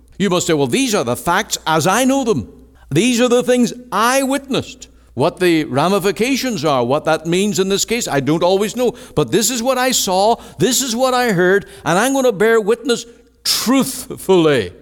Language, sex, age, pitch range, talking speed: English, male, 60-79, 100-165 Hz, 205 wpm